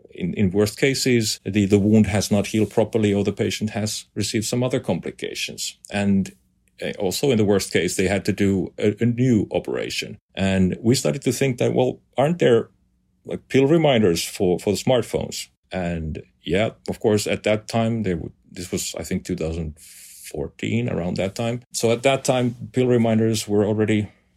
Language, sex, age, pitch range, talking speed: English, male, 40-59, 95-115 Hz, 180 wpm